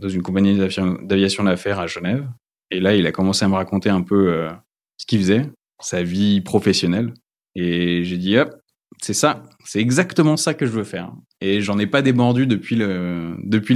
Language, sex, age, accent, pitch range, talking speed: French, male, 20-39, French, 95-110 Hz, 200 wpm